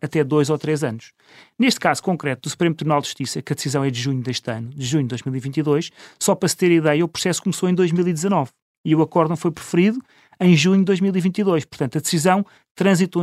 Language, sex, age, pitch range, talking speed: Portuguese, male, 30-49, 150-200 Hz, 220 wpm